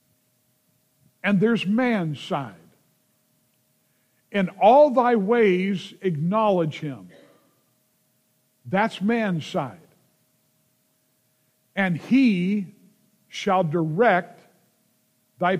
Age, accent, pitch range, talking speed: 50-69, American, 160-215 Hz, 70 wpm